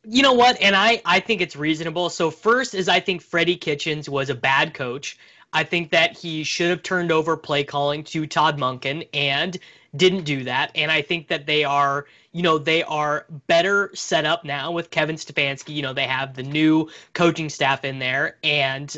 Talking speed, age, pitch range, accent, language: 205 wpm, 20-39, 145-180 Hz, American, English